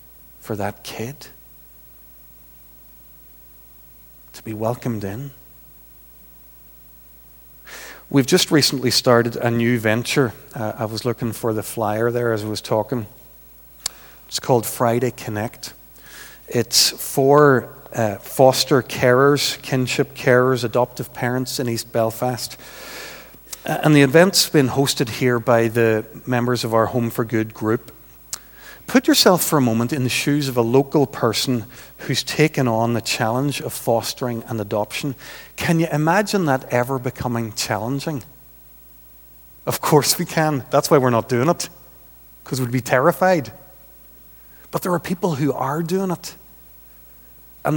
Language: English